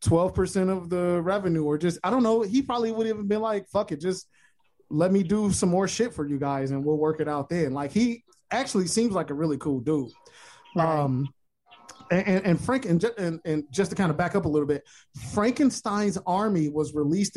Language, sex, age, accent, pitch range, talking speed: English, male, 20-39, American, 140-190 Hz, 220 wpm